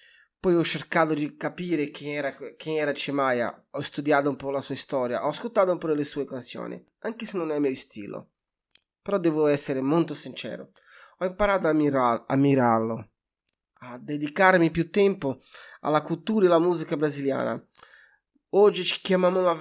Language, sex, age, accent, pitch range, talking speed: Italian, male, 20-39, native, 140-175 Hz, 165 wpm